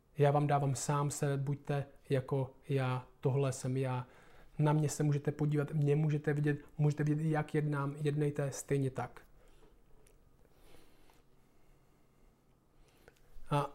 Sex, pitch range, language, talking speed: male, 150-175 Hz, Czech, 120 wpm